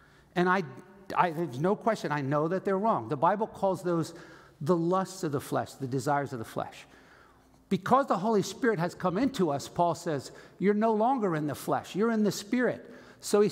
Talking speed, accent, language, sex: 200 wpm, American, English, male